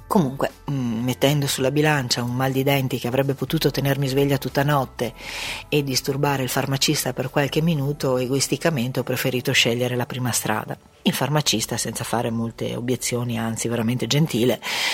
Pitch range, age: 125-145 Hz, 40-59